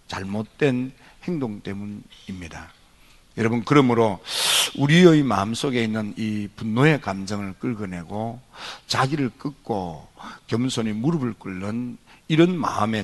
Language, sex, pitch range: Korean, male, 100-135 Hz